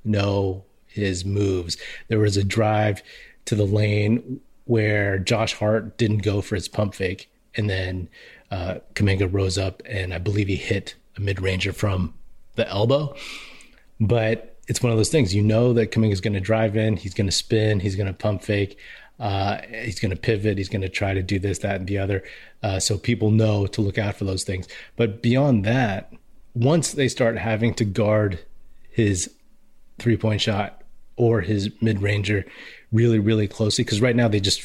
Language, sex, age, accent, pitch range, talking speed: English, male, 30-49, American, 100-115 Hz, 190 wpm